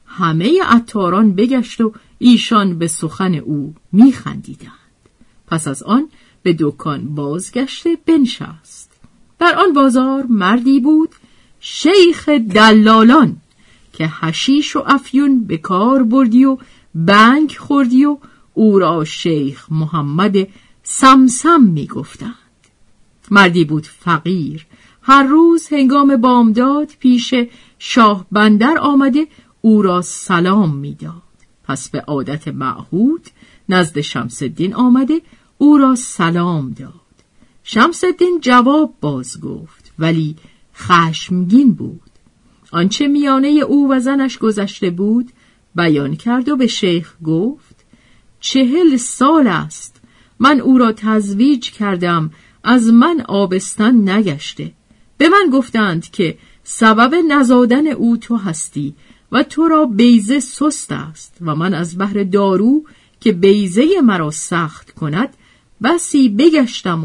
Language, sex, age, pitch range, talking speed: Persian, female, 50-69, 175-270 Hz, 115 wpm